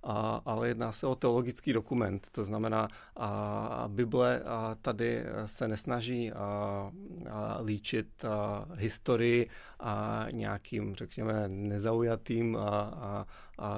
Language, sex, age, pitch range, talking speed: Czech, male, 30-49, 105-125 Hz, 120 wpm